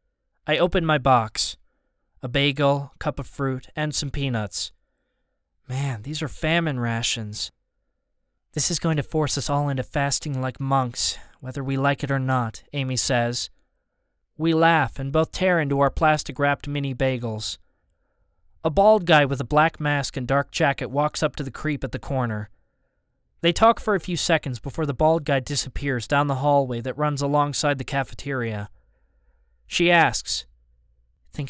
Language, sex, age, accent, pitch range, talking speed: English, male, 20-39, American, 120-150 Hz, 160 wpm